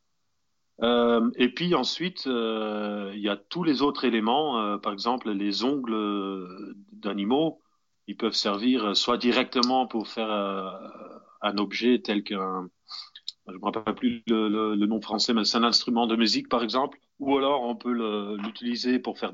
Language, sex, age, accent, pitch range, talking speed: French, male, 30-49, French, 100-135 Hz, 170 wpm